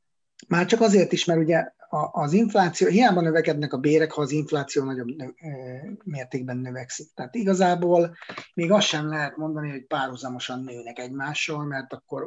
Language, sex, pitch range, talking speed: Hungarian, male, 130-160 Hz, 150 wpm